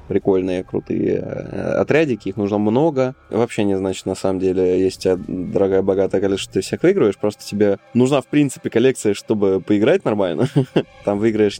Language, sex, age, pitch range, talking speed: Russian, male, 20-39, 95-110 Hz, 160 wpm